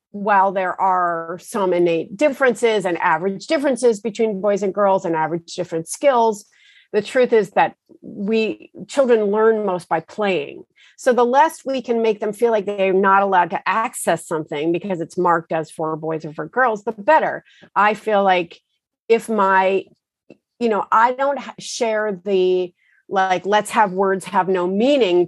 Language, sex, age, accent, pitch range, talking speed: English, female, 40-59, American, 180-230 Hz, 170 wpm